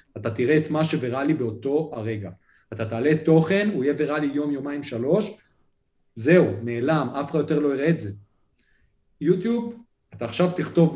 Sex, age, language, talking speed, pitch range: male, 30-49, Hebrew, 160 wpm, 120-175 Hz